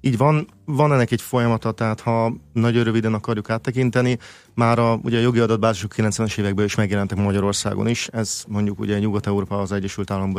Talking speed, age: 180 wpm, 30-49